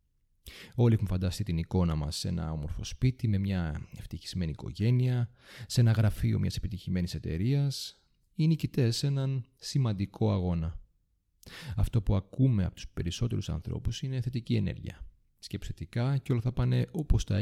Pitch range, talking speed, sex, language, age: 90-125 Hz, 110 wpm, male, Greek, 30-49